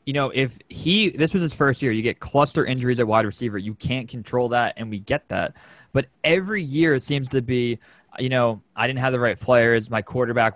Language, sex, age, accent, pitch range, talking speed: English, male, 20-39, American, 120-145 Hz, 235 wpm